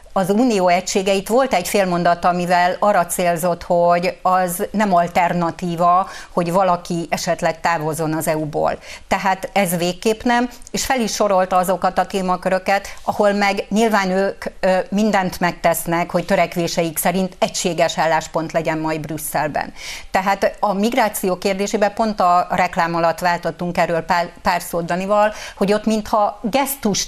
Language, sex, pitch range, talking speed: Hungarian, female, 175-200 Hz, 135 wpm